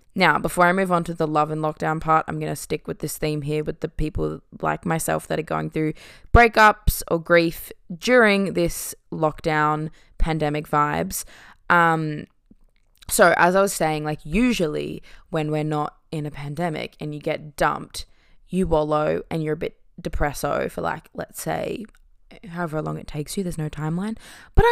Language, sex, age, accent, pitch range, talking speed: English, female, 20-39, Australian, 155-185 Hz, 180 wpm